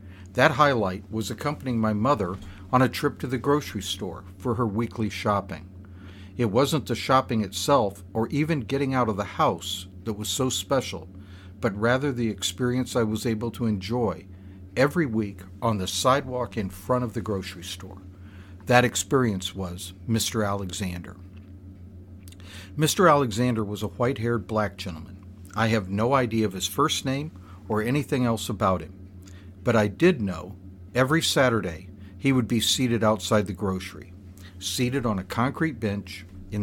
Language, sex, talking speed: English, male, 160 wpm